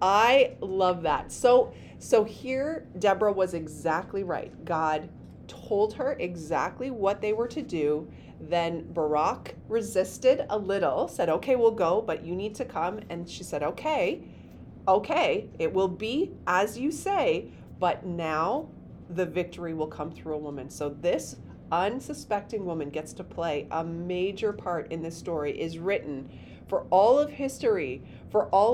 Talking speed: 155 wpm